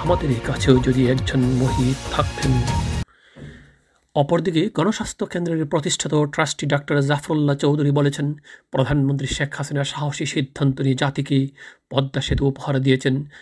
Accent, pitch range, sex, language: native, 135-160 Hz, male, Bengali